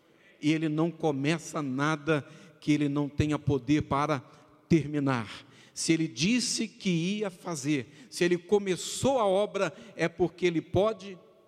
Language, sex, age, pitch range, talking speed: Portuguese, male, 50-69, 140-190 Hz, 140 wpm